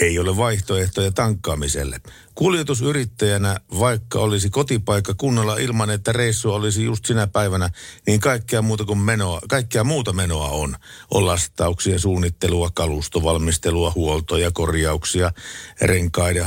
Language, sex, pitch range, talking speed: Finnish, male, 85-110 Hz, 115 wpm